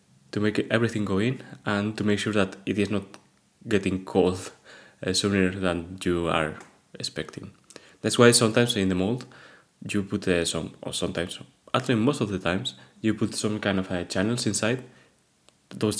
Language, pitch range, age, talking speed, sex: English, 95-110 Hz, 20-39, 175 wpm, male